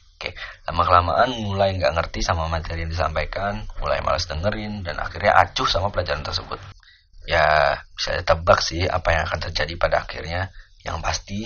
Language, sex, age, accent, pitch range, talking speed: Indonesian, male, 30-49, native, 80-95 Hz, 160 wpm